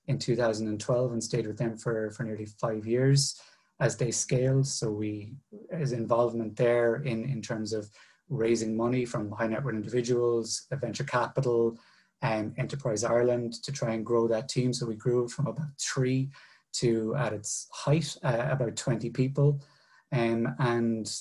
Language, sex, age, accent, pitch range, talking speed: English, male, 30-49, British, 110-130 Hz, 160 wpm